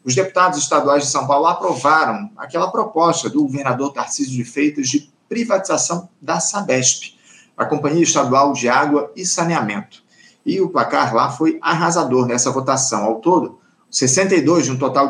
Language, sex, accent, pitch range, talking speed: Portuguese, male, Brazilian, 135-175 Hz, 155 wpm